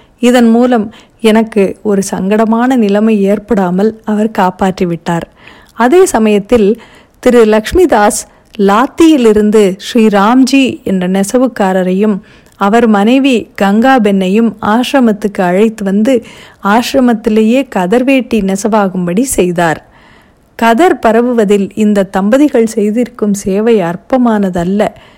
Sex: female